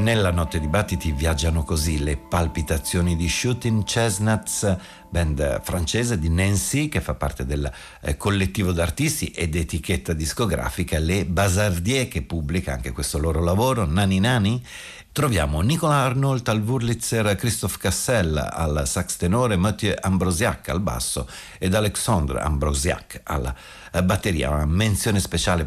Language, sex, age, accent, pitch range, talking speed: Italian, male, 50-69, native, 80-105 Hz, 130 wpm